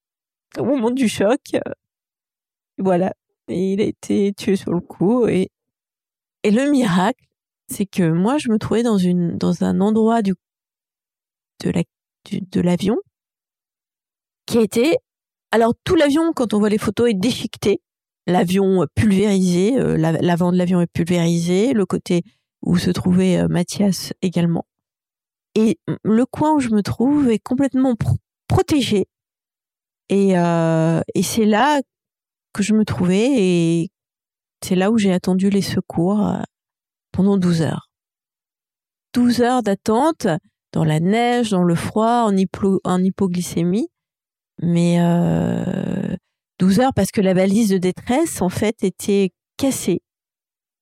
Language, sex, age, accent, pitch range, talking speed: French, female, 30-49, French, 180-225 Hz, 145 wpm